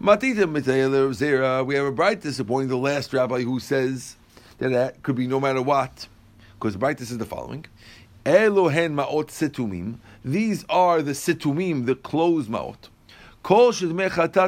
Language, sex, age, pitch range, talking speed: English, male, 50-69, 125-180 Hz, 115 wpm